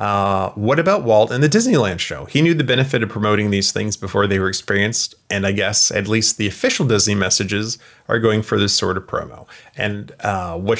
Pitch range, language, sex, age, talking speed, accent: 100-120 Hz, English, male, 30-49, 215 wpm, American